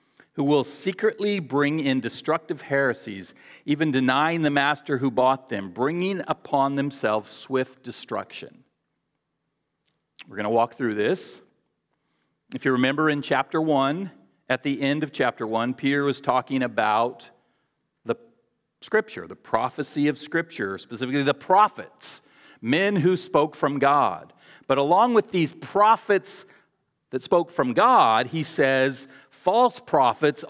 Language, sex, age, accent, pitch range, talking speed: English, male, 40-59, American, 130-170 Hz, 135 wpm